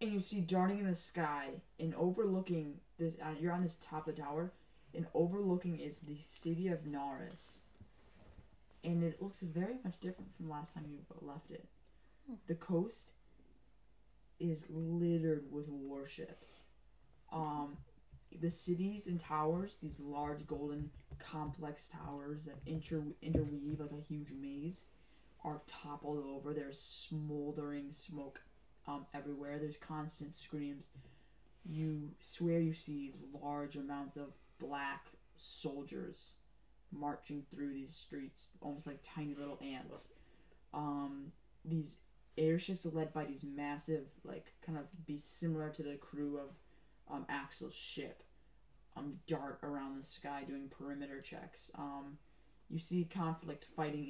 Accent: American